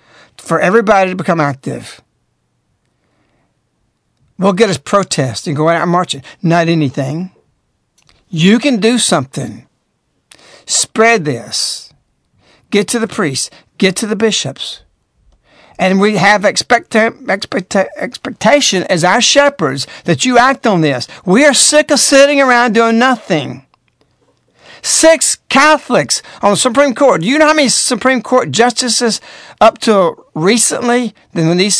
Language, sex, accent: English, male, American